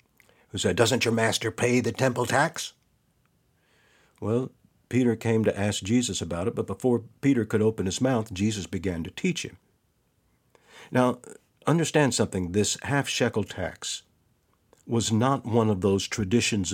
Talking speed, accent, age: 145 wpm, American, 60-79